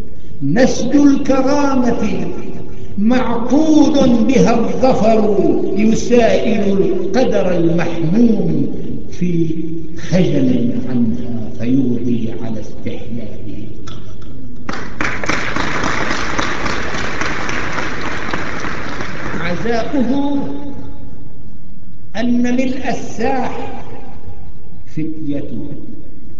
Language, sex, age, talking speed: Arabic, male, 60-79, 45 wpm